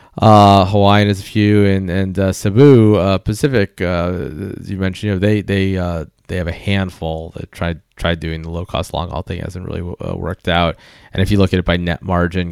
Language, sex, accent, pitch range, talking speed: English, male, American, 90-110 Hz, 235 wpm